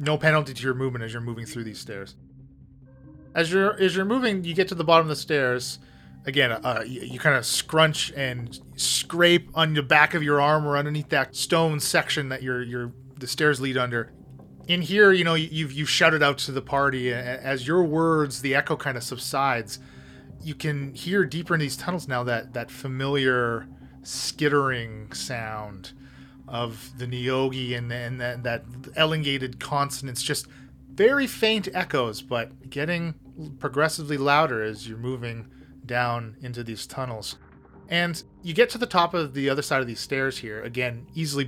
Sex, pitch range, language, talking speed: male, 120-155 Hz, English, 180 wpm